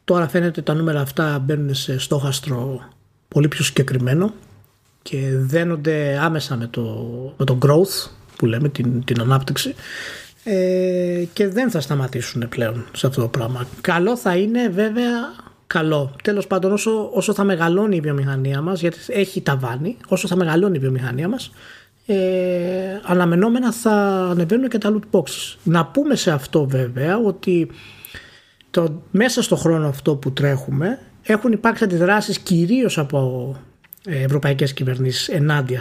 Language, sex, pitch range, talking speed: Greek, male, 140-195 Hz, 145 wpm